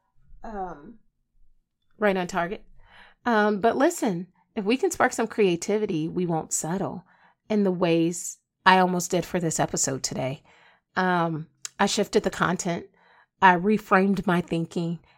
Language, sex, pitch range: English, female, 175-215 Hz